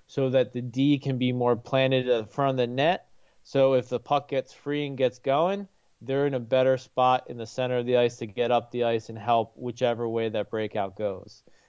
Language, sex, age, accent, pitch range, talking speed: English, male, 30-49, American, 120-145 Hz, 235 wpm